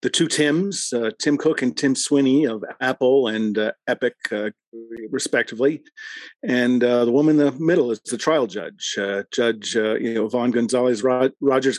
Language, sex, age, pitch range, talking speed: English, male, 50-69, 115-145 Hz, 185 wpm